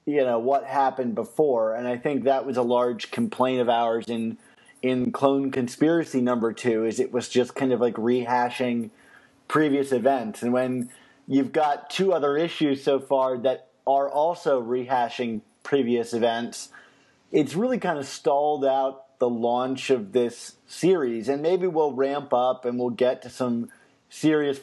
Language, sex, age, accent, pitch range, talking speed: English, male, 30-49, American, 125-155 Hz, 165 wpm